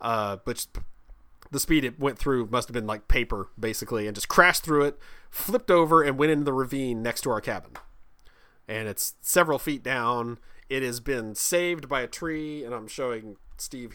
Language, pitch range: English, 115-180 Hz